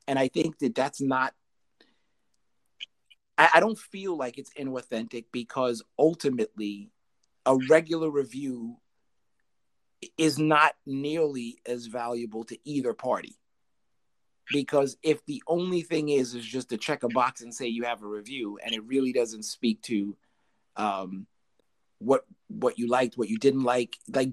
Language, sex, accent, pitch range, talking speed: English, male, American, 120-150 Hz, 150 wpm